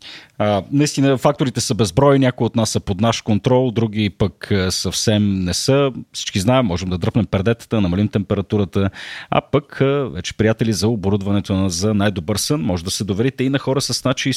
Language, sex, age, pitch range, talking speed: Bulgarian, male, 40-59, 95-130 Hz, 185 wpm